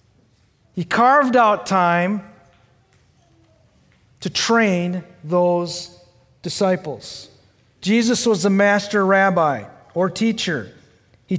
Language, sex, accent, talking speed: English, male, American, 85 wpm